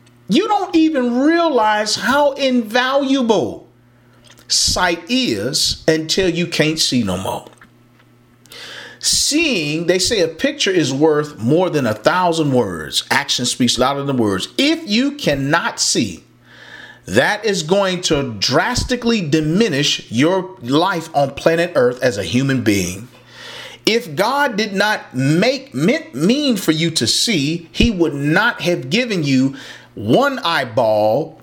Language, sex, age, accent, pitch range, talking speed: English, male, 40-59, American, 150-230 Hz, 130 wpm